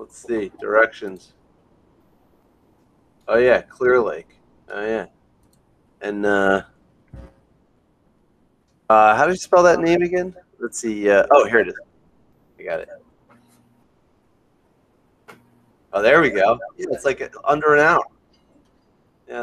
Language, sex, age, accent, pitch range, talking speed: English, male, 30-49, American, 125-175 Hz, 120 wpm